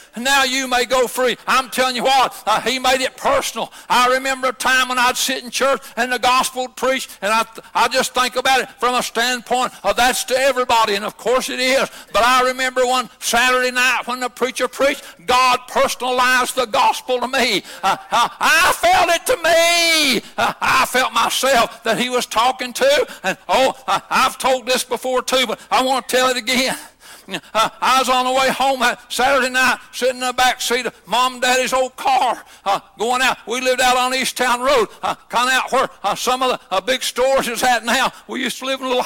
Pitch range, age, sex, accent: 245-265 Hz, 60-79, male, American